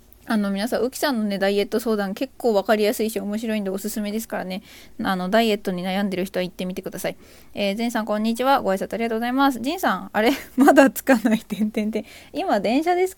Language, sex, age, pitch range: Japanese, female, 20-39, 195-265 Hz